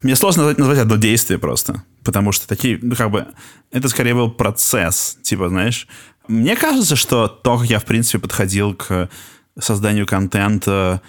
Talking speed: 160 wpm